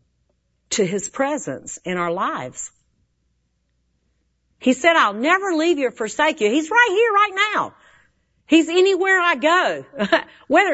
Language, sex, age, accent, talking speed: English, female, 50-69, American, 140 wpm